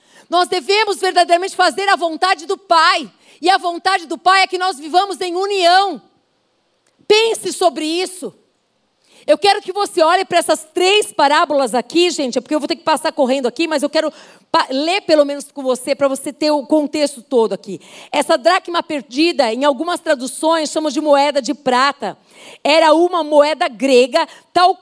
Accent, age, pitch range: Brazilian, 50-69, 215-330 Hz